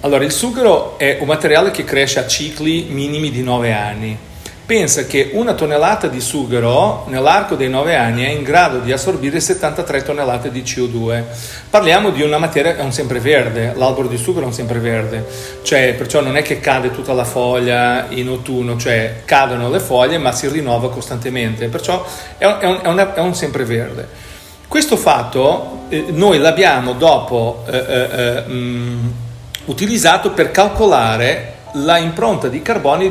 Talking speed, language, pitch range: 160 wpm, Italian, 125-175 Hz